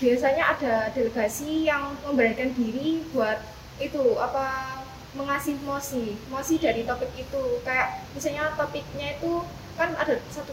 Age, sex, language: 10-29, female, Indonesian